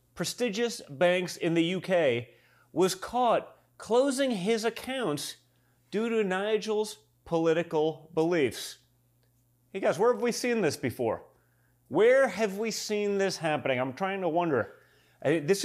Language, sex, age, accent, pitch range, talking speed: English, male, 30-49, American, 125-180 Hz, 130 wpm